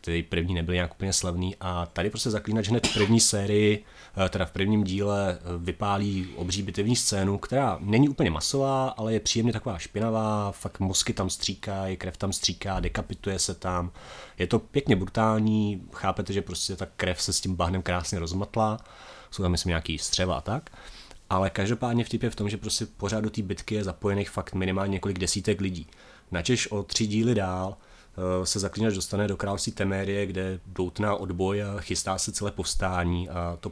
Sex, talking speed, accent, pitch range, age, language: male, 185 wpm, native, 90-105 Hz, 30-49, Czech